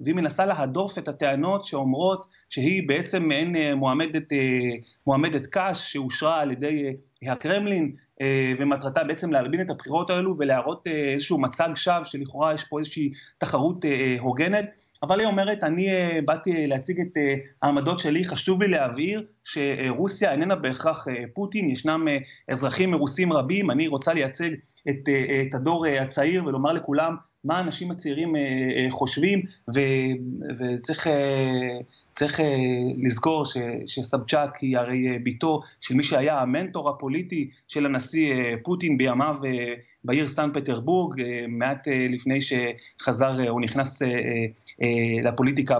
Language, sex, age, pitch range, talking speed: Hebrew, male, 30-49, 130-165 Hz, 120 wpm